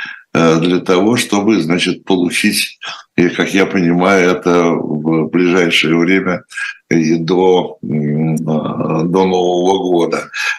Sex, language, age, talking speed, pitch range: male, Russian, 60-79, 90 wpm, 85-110 Hz